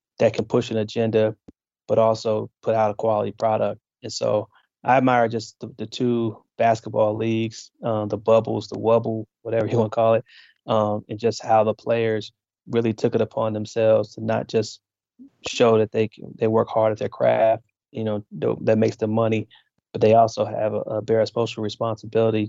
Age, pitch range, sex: 20-39, 105-115 Hz, male